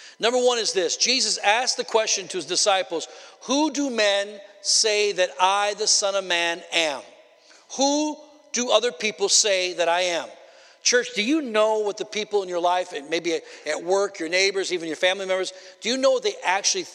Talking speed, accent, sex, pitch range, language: 195 wpm, American, male, 185-250 Hz, English